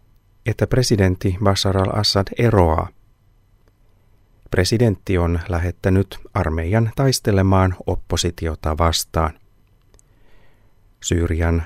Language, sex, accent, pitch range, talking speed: Finnish, male, native, 90-110 Hz, 65 wpm